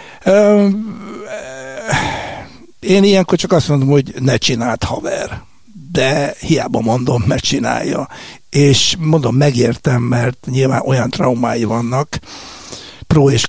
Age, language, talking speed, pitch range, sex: 60-79, Hungarian, 105 wpm, 115-140 Hz, male